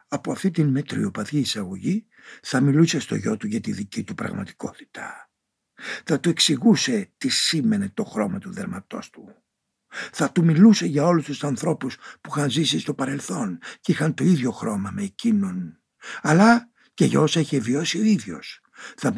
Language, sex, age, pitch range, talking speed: Greek, male, 60-79, 150-225 Hz, 165 wpm